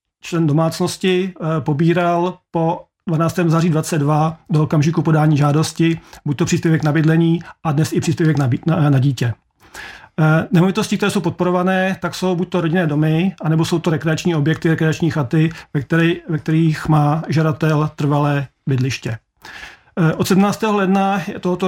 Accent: native